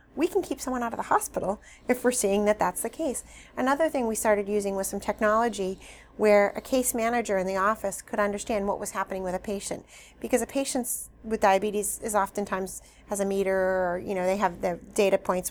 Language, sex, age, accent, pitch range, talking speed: English, female, 30-49, American, 185-220 Hz, 215 wpm